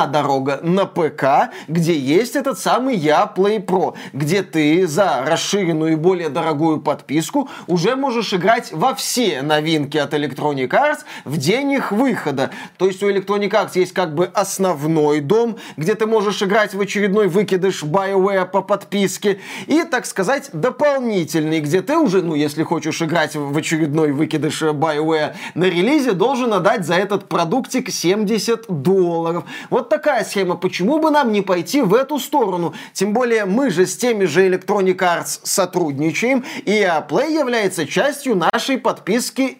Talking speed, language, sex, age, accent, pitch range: 150 wpm, Russian, male, 20-39, native, 170-245 Hz